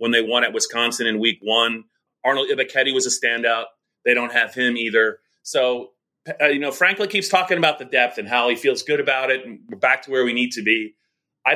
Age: 30-49